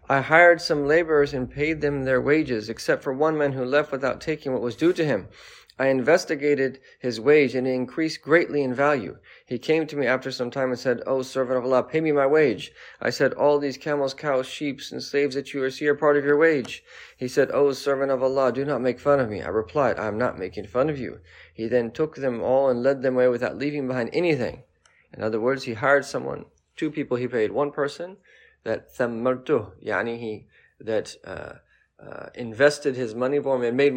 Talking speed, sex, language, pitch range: 220 wpm, male, English, 125-145 Hz